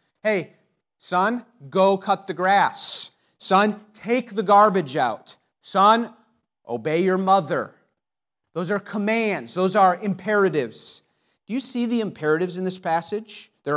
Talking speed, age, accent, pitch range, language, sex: 130 wpm, 40-59, American, 170-220 Hz, English, male